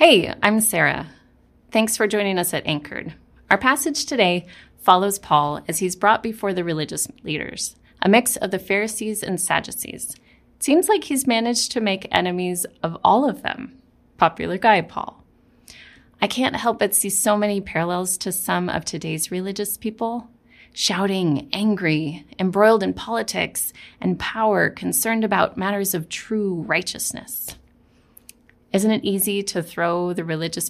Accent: American